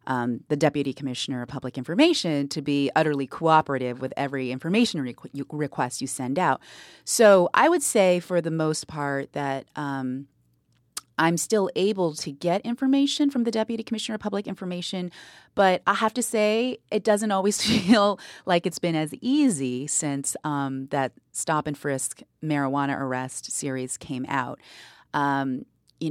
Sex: female